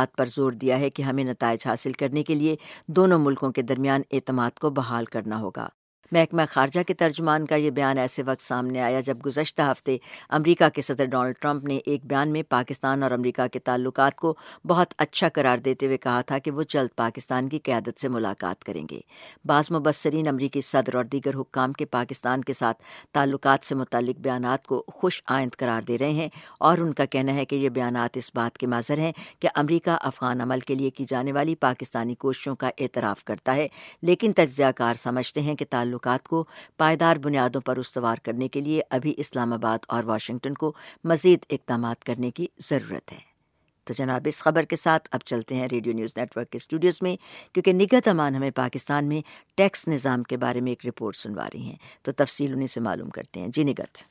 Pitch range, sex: 125-150 Hz, female